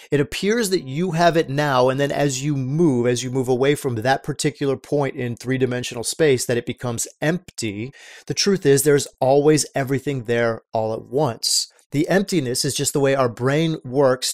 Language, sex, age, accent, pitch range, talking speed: English, male, 30-49, American, 135-180 Hz, 195 wpm